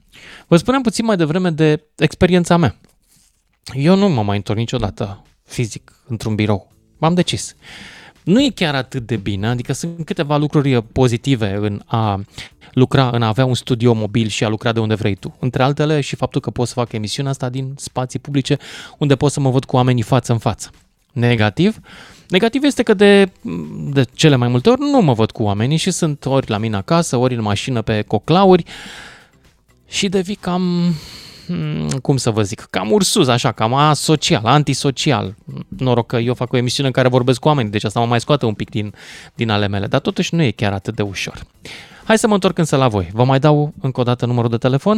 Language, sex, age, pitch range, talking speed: Romanian, male, 20-39, 115-155 Hz, 205 wpm